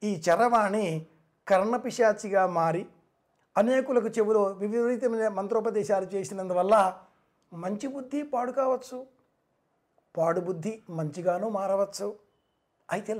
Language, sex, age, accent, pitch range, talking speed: Telugu, male, 60-79, native, 190-235 Hz, 75 wpm